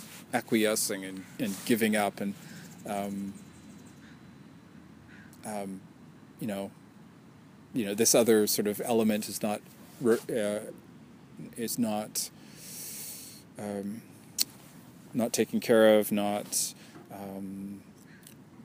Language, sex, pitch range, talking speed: English, male, 100-125 Hz, 95 wpm